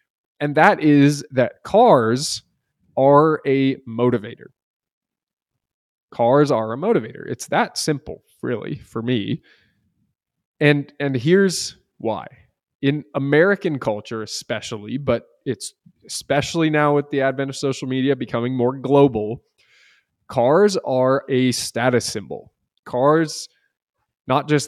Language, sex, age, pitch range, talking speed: English, male, 20-39, 120-145 Hz, 115 wpm